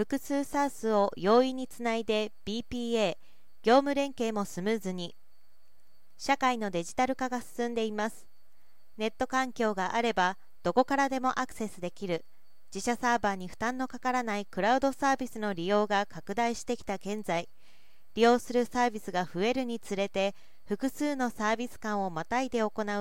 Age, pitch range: 40-59, 195-250 Hz